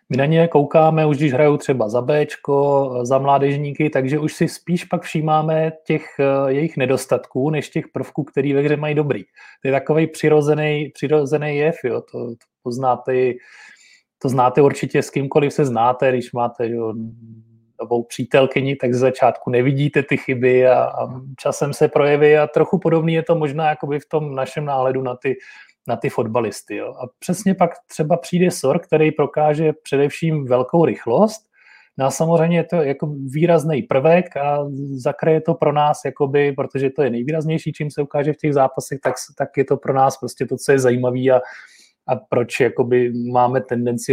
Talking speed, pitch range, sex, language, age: 175 wpm, 130-155 Hz, male, Czech, 30-49